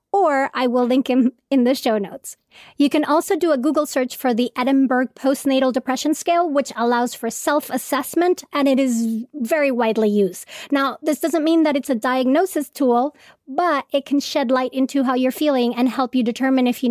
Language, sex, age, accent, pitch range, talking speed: English, female, 30-49, American, 245-300 Hz, 200 wpm